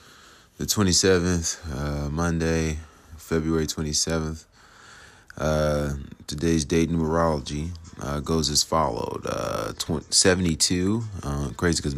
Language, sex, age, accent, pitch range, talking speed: English, male, 20-39, American, 75-85 Hz, 95 wpm